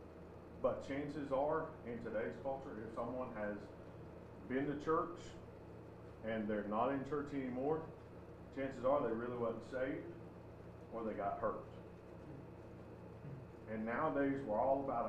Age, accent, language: 40-59, American, English